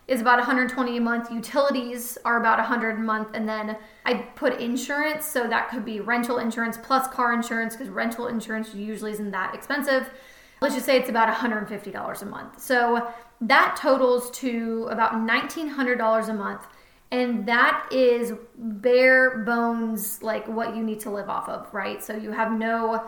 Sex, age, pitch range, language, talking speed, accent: female, 20-39, 225-260 Hz, English, 170 wpm, American